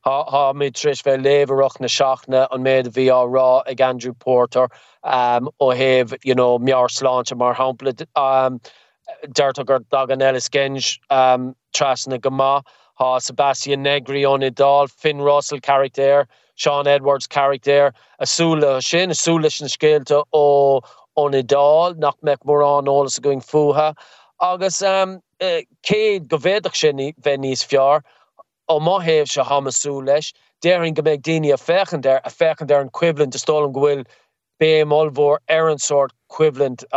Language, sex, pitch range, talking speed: English, male, 135-155 Hz, 135 wpm